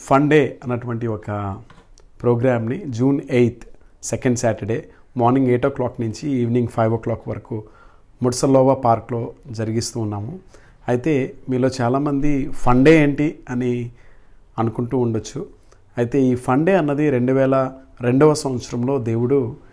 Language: Telugu